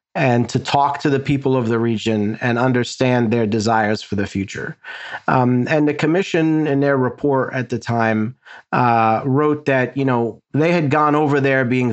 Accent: American